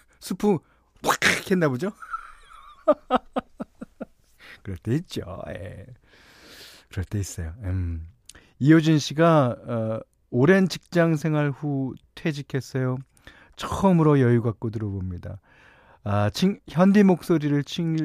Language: Korean